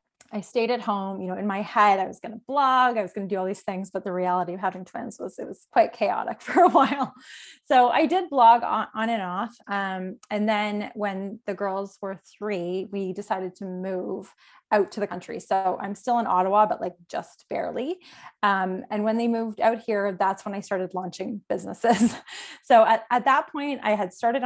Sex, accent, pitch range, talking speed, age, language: female, American, 190-230 Hz, 220 wpm, 20-39, English